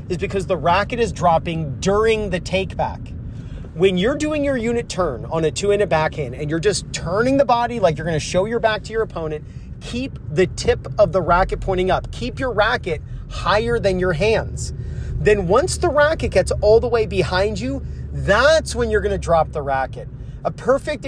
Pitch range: 155-220 Hz